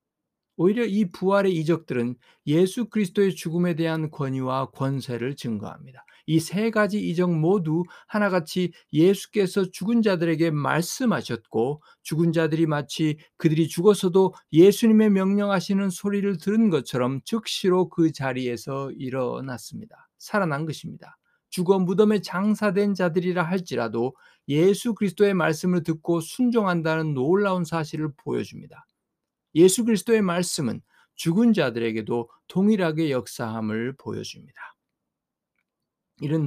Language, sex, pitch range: Korean, male, 150-195 Hz